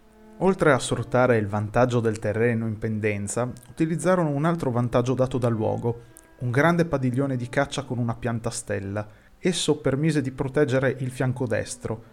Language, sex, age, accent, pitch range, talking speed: Italian, male, 30-49, native, 115-145 Hz, 160 wpm